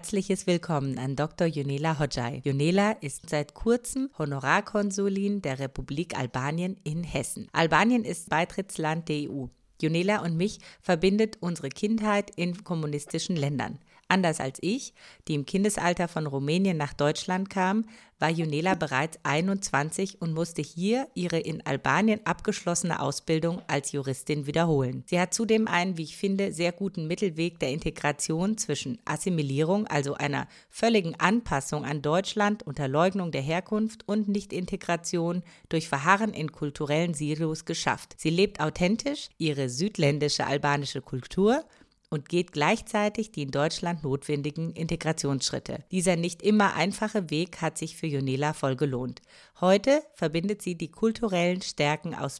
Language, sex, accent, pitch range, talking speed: German, female, German, 150-195 Hz, 140 wpm